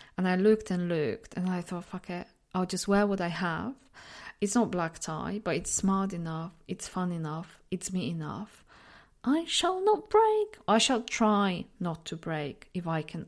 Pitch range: 165-205 Hz